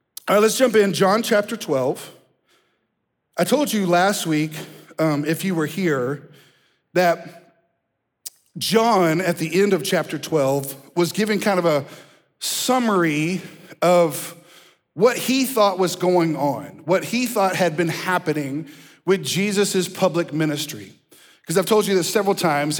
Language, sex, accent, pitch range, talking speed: English, male, American, 165-205 Hz, 145 wpm